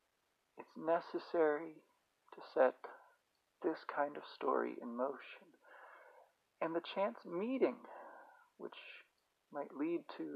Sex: male